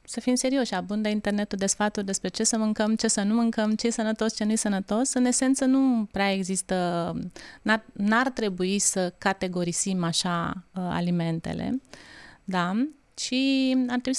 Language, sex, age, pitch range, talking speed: Romanian, female, 30-49, 195-255 Hz, 155 wpm